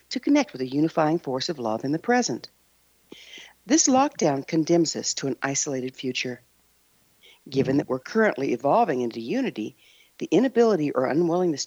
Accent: American